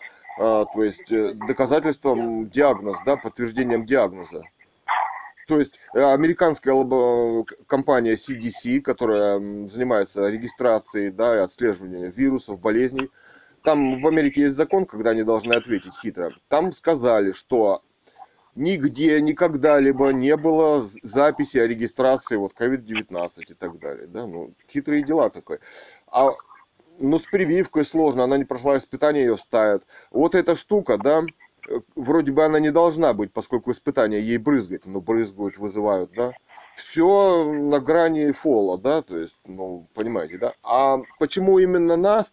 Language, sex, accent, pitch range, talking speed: Russian, male, native, 110-160 Hz, 135 wpm